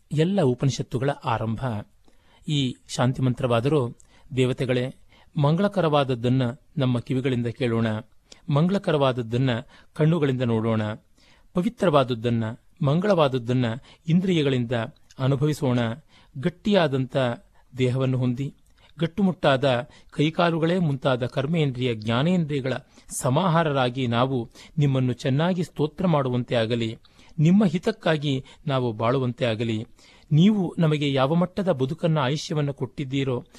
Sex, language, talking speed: male, Kannada, 80 wpm